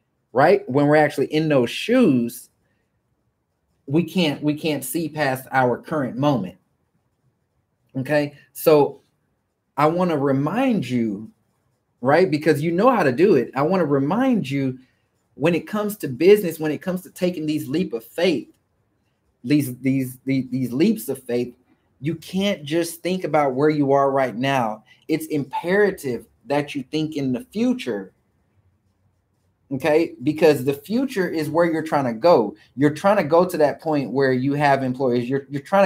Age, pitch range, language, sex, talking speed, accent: 30-49, 130-170 Hz, English, male, 165 wpm, American